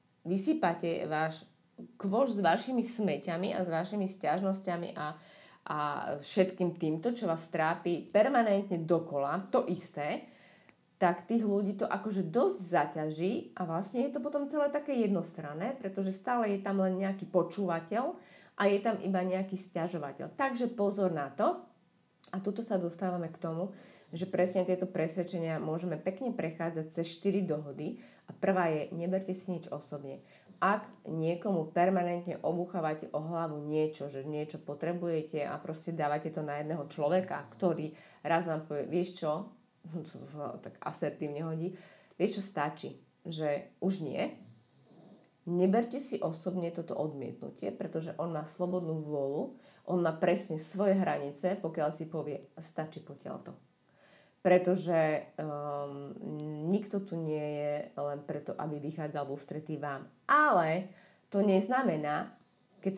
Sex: female